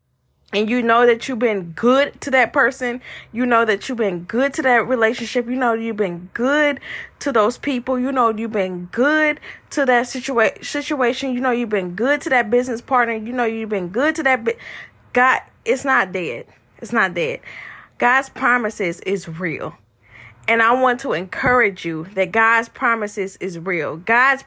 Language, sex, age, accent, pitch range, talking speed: English, female, 20-39, American, 225-275 Hz, 180 wpm